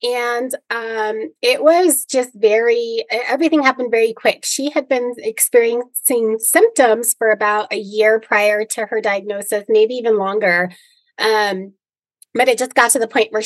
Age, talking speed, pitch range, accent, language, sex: 30-49, 155 wpm, 200-255 Hz, American, English, female